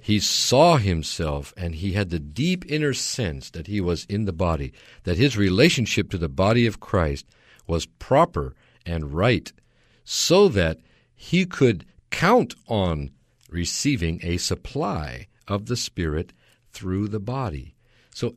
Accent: American